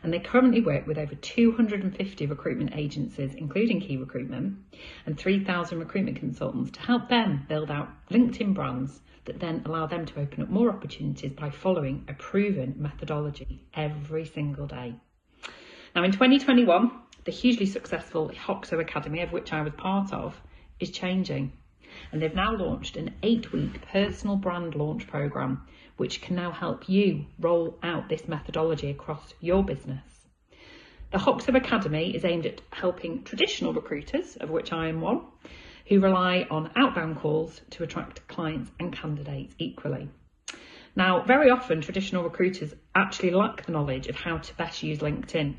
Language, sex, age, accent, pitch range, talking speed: English, female, 40-59, British, 150-195 Hz, 155 wpm